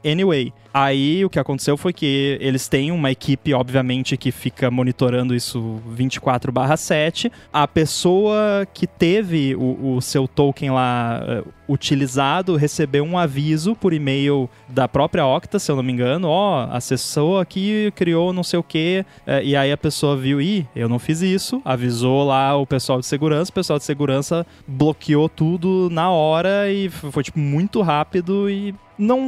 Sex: male